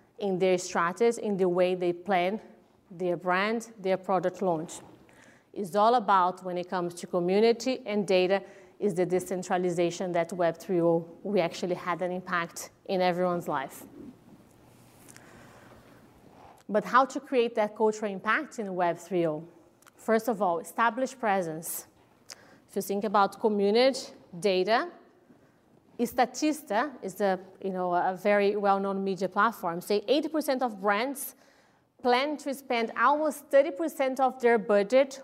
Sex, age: female, 30-49